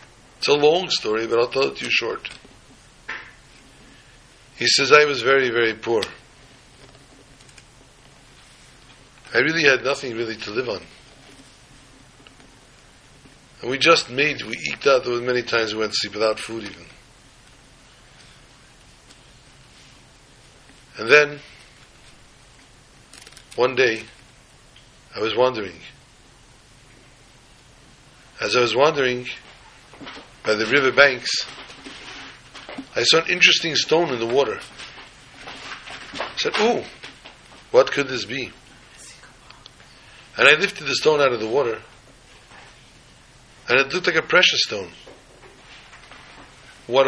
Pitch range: 120-140 Hz